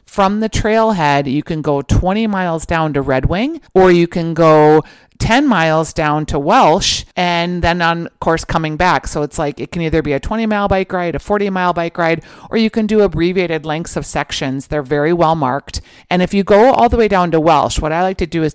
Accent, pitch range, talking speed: American, 145-180 Hz, 235 wpm